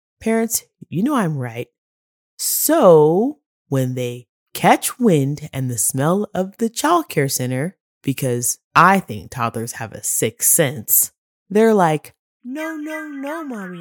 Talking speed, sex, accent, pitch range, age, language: 140 wpm, female, American, 135-220 Hz, 20-39, English